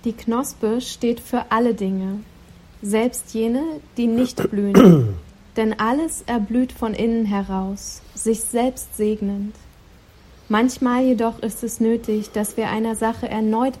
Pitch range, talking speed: 210-245 Hz, 130 wpm